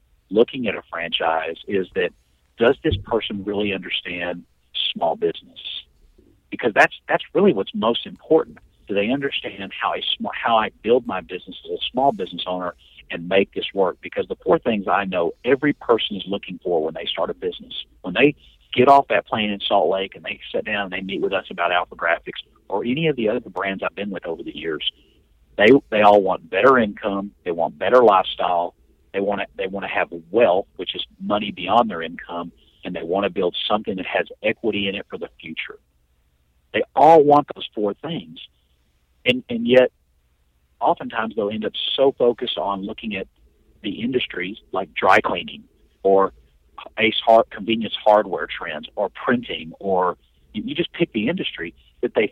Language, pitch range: English, 80-115 Hz